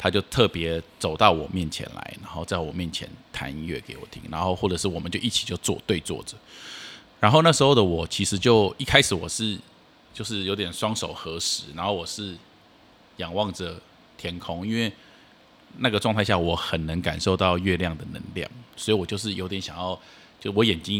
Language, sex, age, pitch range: Chinese, male, 20-39, 85-105 Hz